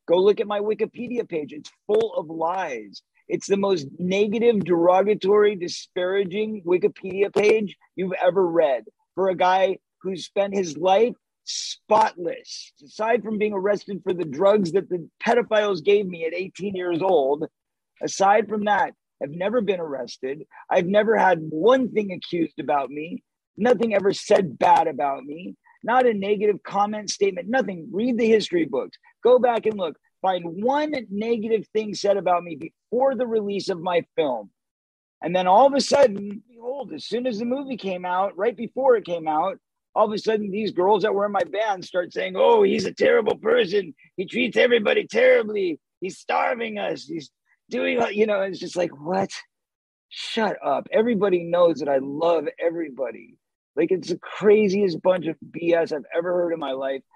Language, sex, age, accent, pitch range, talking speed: English, male, 40-59, American, 180-240 Hz, 175 wpm